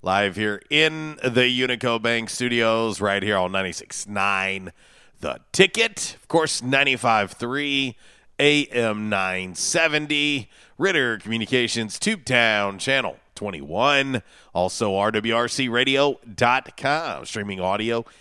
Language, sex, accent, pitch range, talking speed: English, male, American, 110-140 Hz, 90 wpm